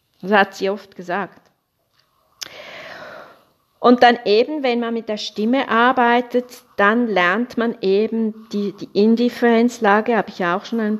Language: German